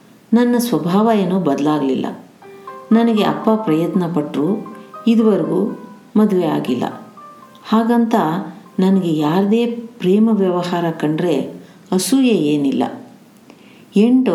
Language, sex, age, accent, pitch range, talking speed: Kannada, female, 50-69, native, 165-225 Hz, 85 wpm